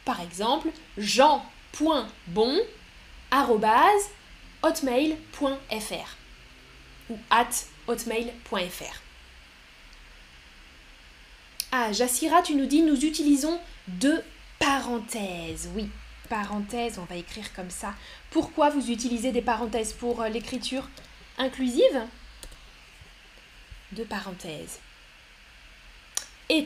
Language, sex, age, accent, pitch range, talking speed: French, female, 10-29, French, 195-275 Hz, 75 wpm